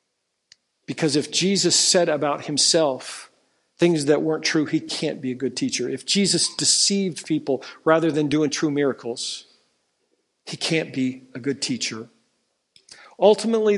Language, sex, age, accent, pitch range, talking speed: English, male, 50-69, American, 140-175 Hz, 140 wpm